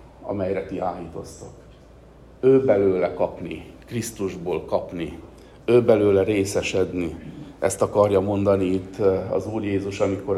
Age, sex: 50-69, male